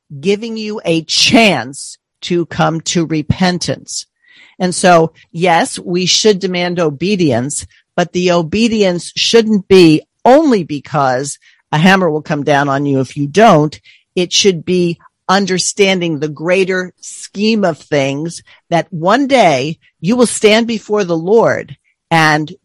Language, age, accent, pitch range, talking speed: English, 50-69, American, 155-205 Hz, 135 wpm